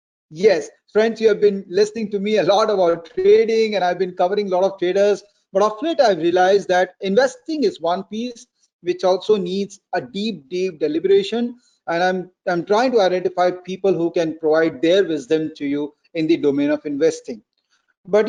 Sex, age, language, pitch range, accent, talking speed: male, 40-59, Tamil, 180-240 Hz, native, 185 wpm